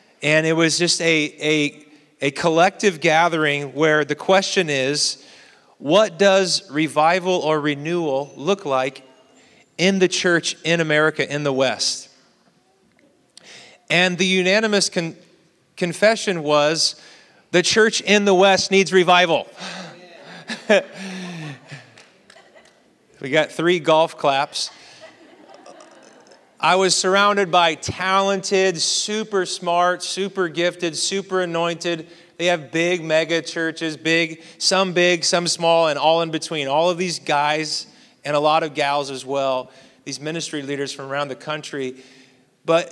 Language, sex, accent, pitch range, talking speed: English, male, American, 150-180 Hz, 125 wpm